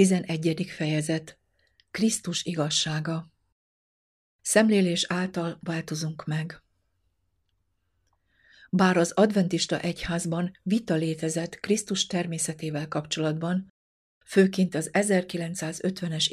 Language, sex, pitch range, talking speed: Hungarian, female, 160-190 Hz, 75 wpm